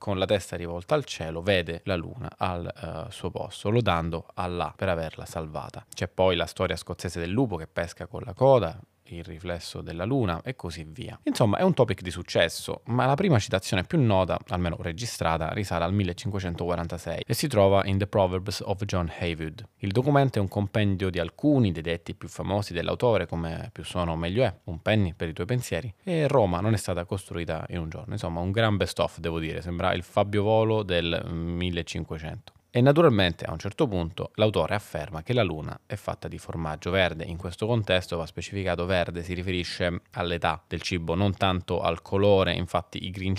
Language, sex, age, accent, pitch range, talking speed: Italian, male, 20-39, native, 85-105 Hz, 195 wpm